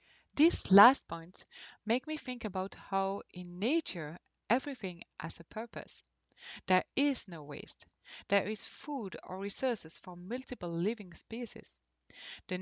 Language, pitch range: English, 185-265 Hz